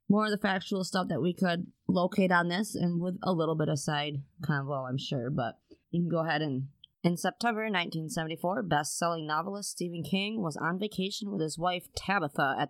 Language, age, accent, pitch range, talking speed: English, 20-39, American, 160-195 Hz, 200 wpm